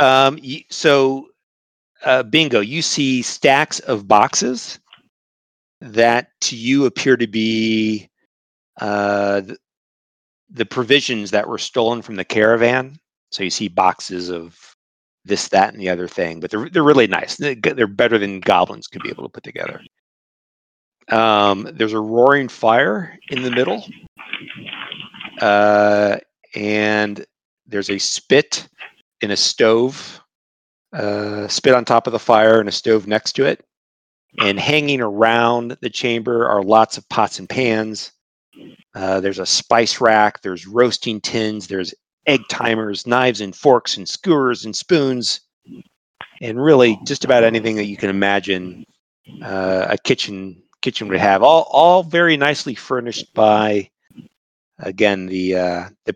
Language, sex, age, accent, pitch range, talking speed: English, male, 40-59, American, 100-120 Hz, 145 wpm